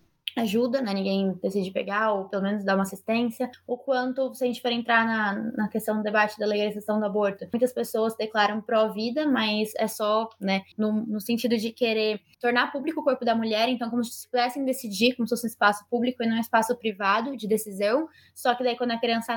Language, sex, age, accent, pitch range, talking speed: Portuguese, female, 10-29, Brazilian, 215-255 Hz, 215 wpm